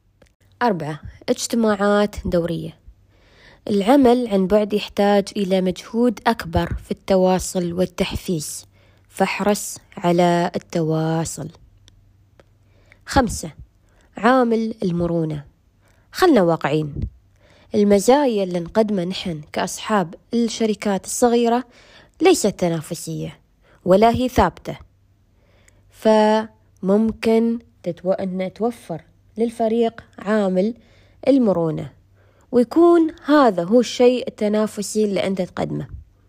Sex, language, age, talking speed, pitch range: female, Arabic, 20-39, 80 wpm, 155-225 Hz